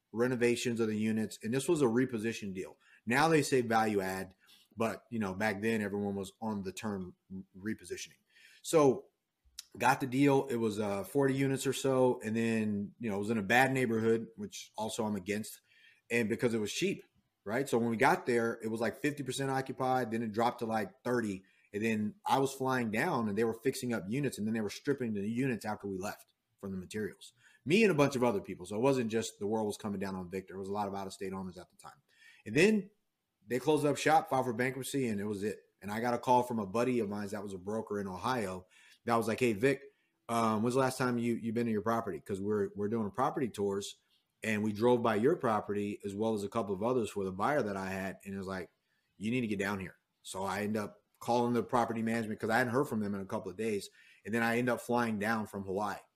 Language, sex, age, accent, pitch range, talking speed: English, male, 30-49, American, 105-125 Hz, 250 wpm